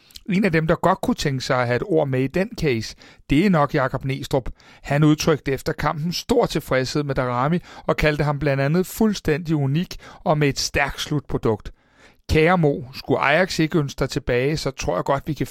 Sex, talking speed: male, 215 wpm